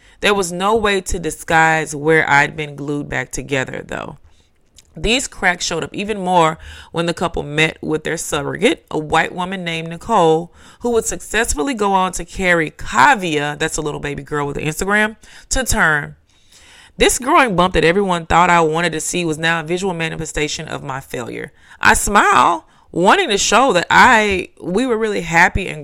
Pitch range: 150-185 Hz